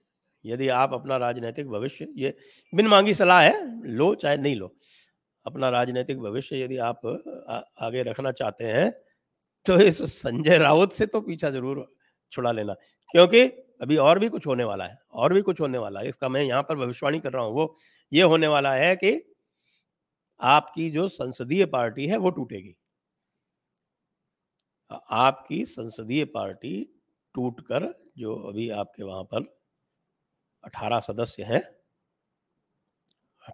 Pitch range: 130-185 Hz